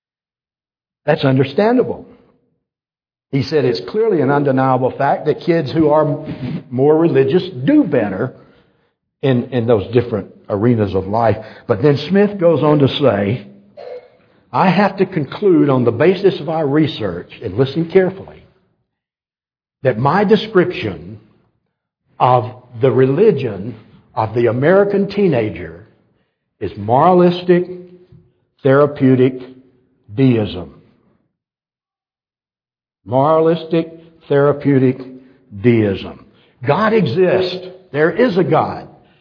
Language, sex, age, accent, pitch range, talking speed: English, male, 60-79, American, 125-175 Hz, 105 wpm